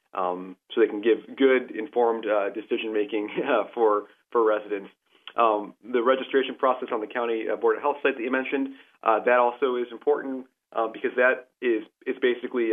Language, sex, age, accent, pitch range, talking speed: English, male, 30-49, American, 110-135 Hz, 180 wpm